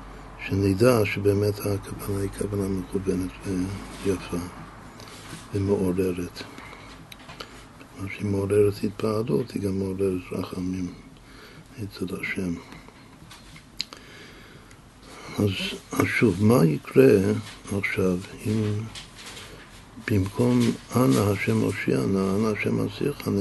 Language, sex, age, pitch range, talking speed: Hebrew, male, 60-79, 100-120 Hz, 85 wpm